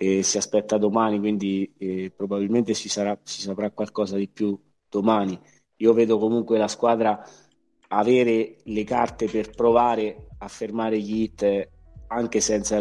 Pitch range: 100-110 Hz